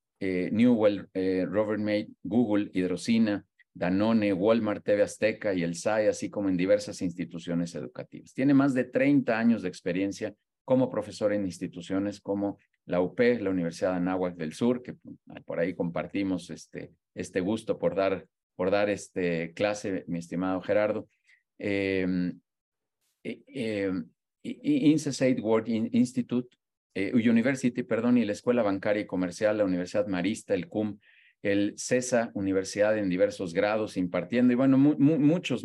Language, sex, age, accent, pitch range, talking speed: Spanish, male, 40-59, Mexican, 95-125 Hz, 140 wpm